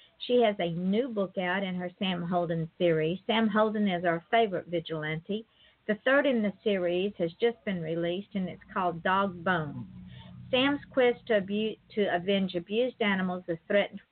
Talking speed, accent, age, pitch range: 165 wpm, American, 50-69, 175-220 Hz